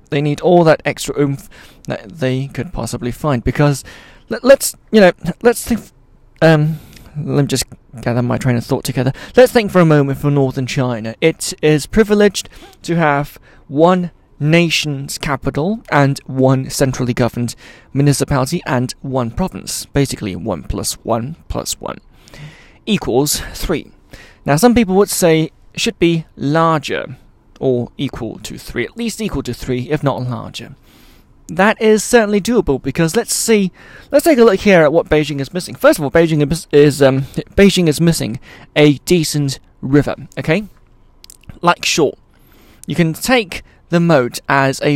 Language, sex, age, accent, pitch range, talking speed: English, male, 20-39, British, 130-170 Hz, 160 wpm